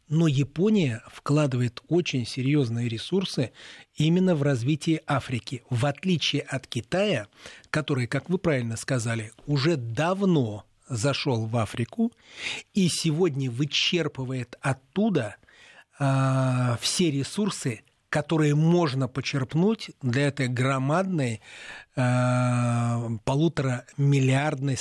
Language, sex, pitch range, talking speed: Russian, male, 125-160 Hz, 90 wpm